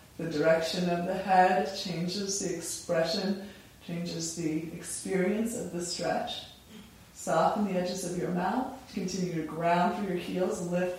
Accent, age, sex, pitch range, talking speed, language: American, 20-39, female, 160-190 Hz, 145 wpm, English